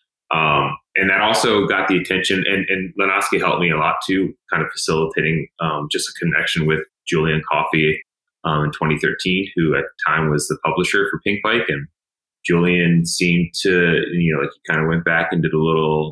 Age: 30-49